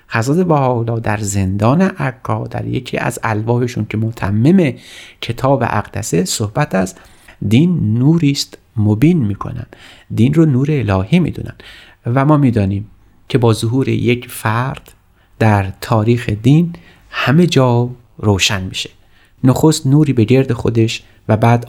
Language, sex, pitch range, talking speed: Persian, male, 105-130 Hz, 125 wpm